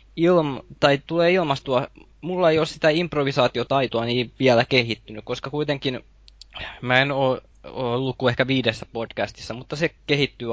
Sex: male